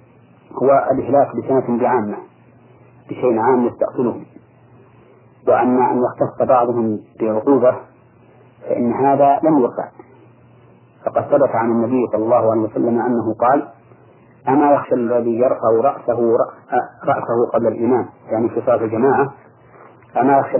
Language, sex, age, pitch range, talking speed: Arabic, male, 40-59, 115-140 Hz, 115 wpm